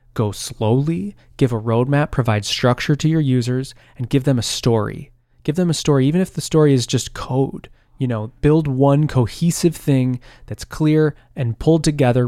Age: 20-39